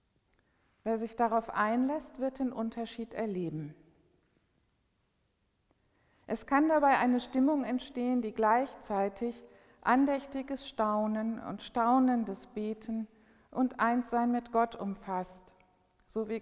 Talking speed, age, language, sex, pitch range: 100 wpm, 60-79, German, female, 190-230 Hz